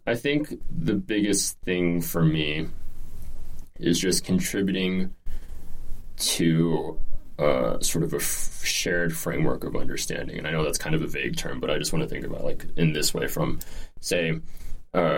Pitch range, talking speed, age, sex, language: 80-95 Hz, 170 wpm, 20-39, male, English